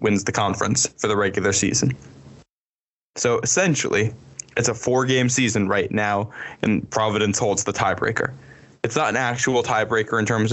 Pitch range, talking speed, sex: 105-125 Hz, 155 wpm, male